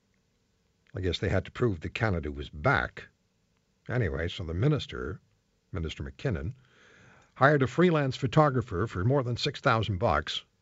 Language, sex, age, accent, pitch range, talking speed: English, male, 60-79, American, 95-145 Hz, 140 wpm